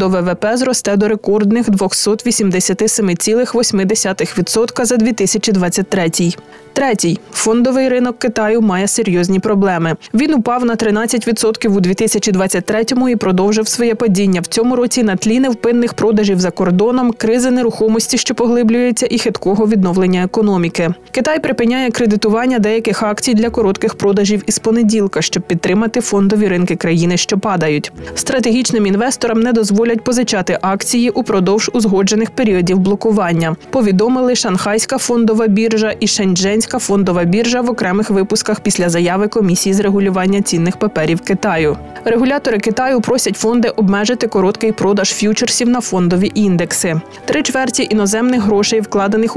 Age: 20-39